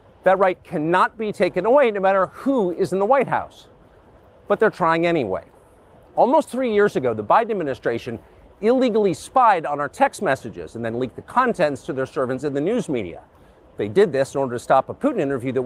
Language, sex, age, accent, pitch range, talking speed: English, male, 40-59, American, 130-195 Hz, 205 wpm